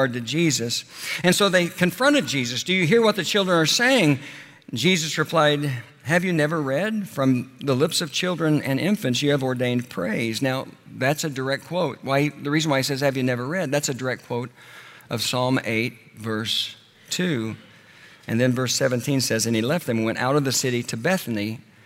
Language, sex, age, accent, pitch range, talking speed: English, male, 60-79, American, 120-150 Hz, 200 wpm